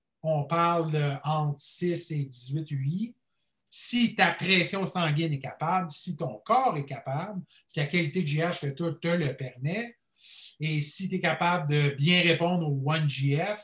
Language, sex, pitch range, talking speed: French, male, 155-185 Hz, 165 wpm